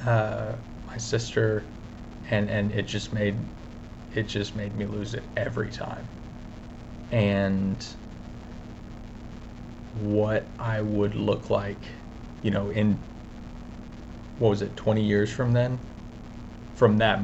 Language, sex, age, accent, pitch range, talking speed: English, male, 30-49, American, 100-115 Hz, 120 wpm